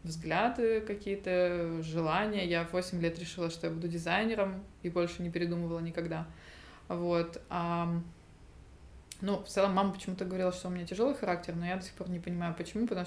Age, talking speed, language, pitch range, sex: 20-39, 175 wpm, Russian, 170-200 Hz, female